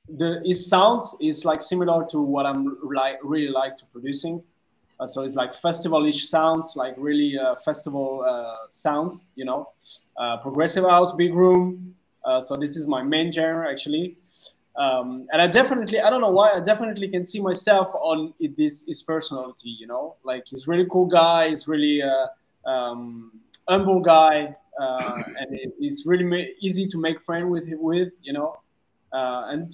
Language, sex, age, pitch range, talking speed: English, male, 20-39, 135-180 Hz, 180 wpm